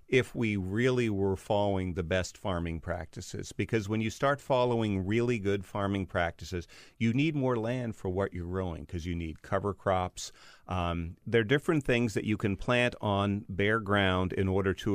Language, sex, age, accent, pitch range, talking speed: English, male, 40-59, American, 95-110 Hz, 185 wpm